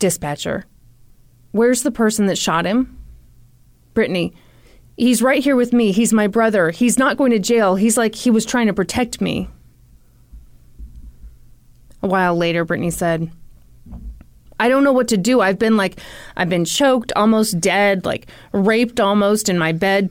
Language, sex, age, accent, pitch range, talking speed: English, female, 30-49, American, 160-225 Hz, 160 wpm